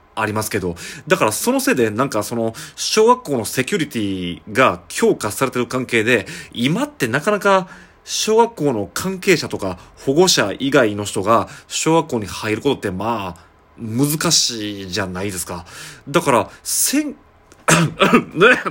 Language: Japanese